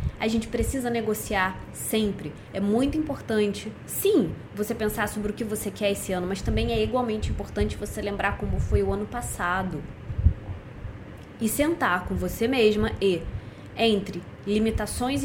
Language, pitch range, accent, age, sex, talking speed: Portuguese, 175-220 Hz, Brazilian, 20-39, female, 150 wpm